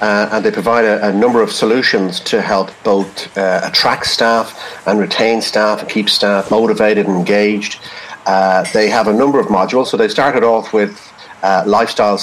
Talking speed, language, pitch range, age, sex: 185 wpm, English, 95-110 Hz, 40-59, male